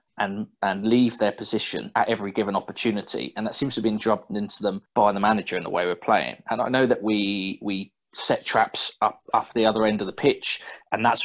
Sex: male